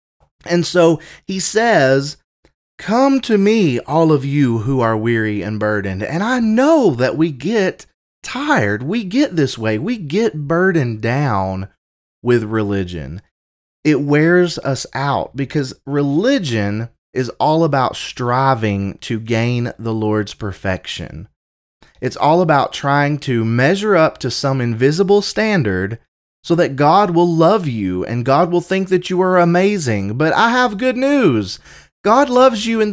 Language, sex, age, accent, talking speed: English, male, 30-49, American, 150 wpm